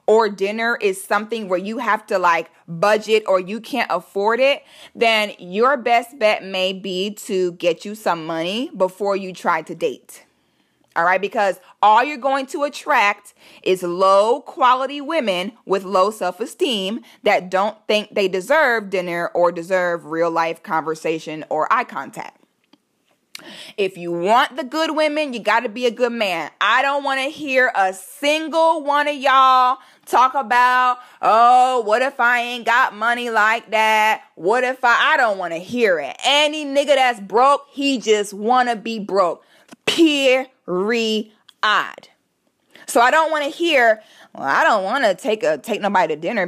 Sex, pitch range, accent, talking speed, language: female, 190-265 Hz, American, 170 wpm, English